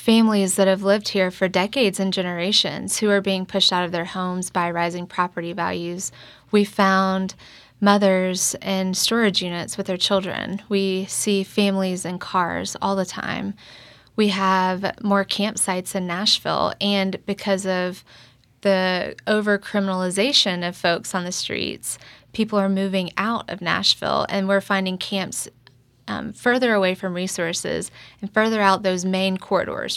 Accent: American